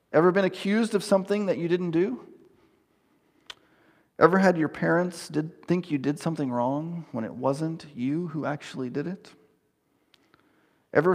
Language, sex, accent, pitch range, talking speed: English, male, American, 135-170 Hz, 150 wpm